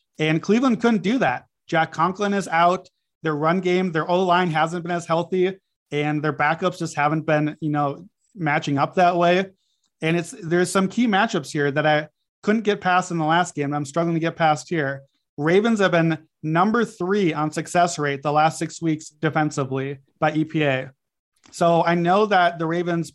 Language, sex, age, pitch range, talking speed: English, male, 30-49, 155-185 Hz, 190 wpm